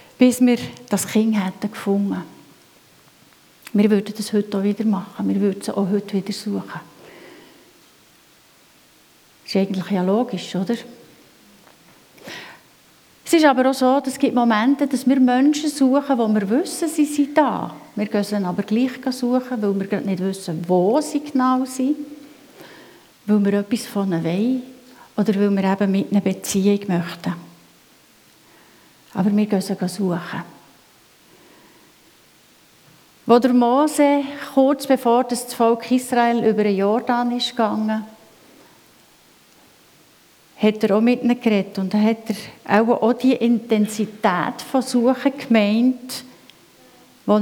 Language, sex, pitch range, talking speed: German, female, 205-255 Hz, 130 wpm